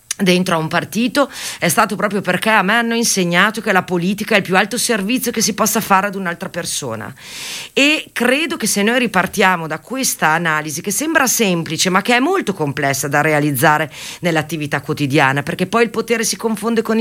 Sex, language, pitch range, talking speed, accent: female, Italian, 170-235 Hz, 195 wpm, native